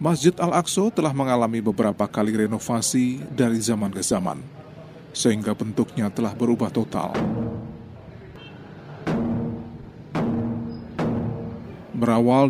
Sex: male